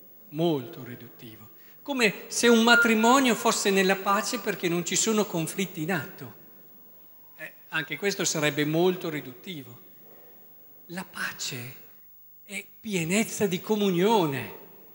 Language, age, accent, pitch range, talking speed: Italian, 50-69, native, 165-220 Hz, 110 wpm